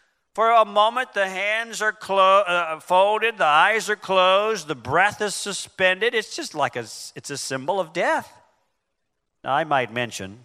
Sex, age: male, 50-69